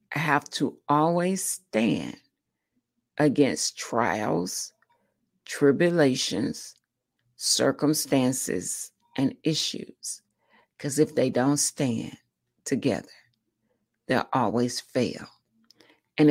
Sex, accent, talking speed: female, American, 75 wpm